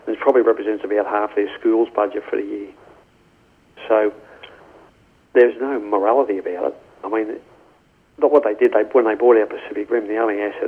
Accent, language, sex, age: British, English, male, 40-59